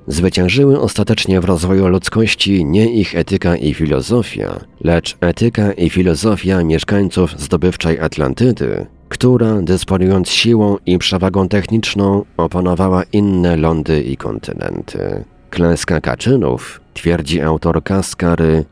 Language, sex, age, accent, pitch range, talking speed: Polish, male, 40-59, native, 85-105 Hz, 105 wpm